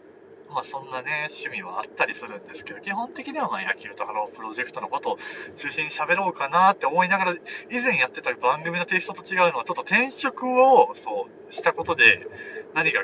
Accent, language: native, Japanese